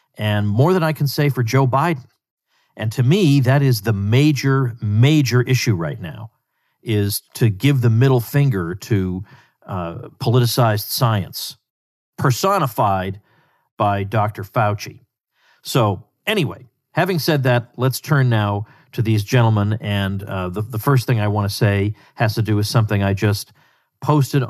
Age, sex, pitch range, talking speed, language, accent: 50-69, male, 110-150 Hz, 150 wpm, English, American